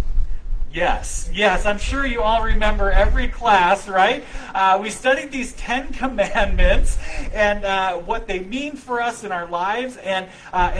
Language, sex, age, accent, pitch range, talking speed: English, male, 40-59, American, 195-250 Hz, 155 wpm